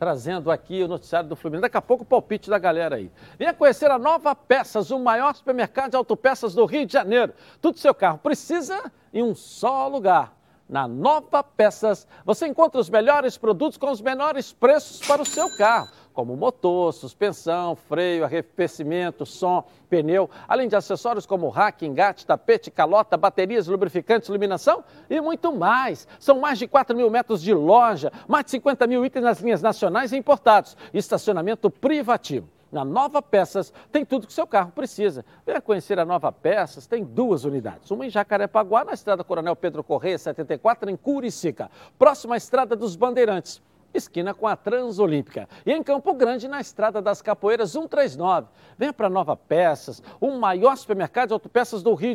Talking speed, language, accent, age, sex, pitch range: 175 wpm, Portuguese, Brazilian, 60-79, male, 195-275 Hz